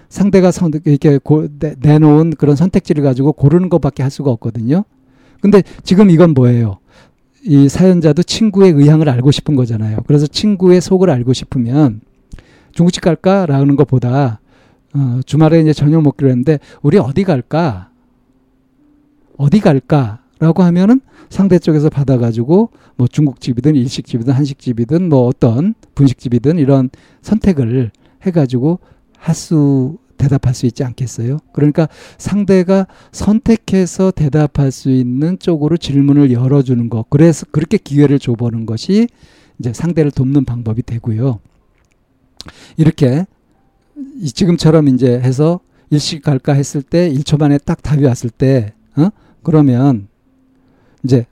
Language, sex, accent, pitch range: Korean, male, native, 130-165 Hz